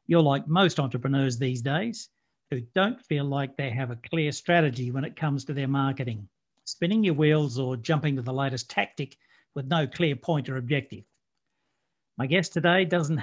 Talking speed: 180 wpm